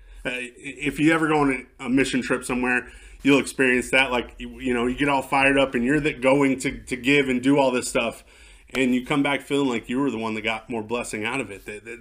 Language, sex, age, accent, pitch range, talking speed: English, male, 30-49, American, 115-140 Hz, 260 wpm